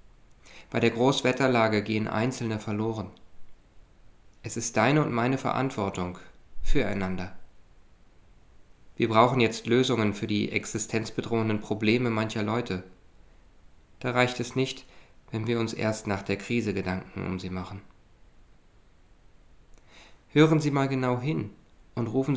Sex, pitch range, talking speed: male, 95-115 Hz, 120 wpm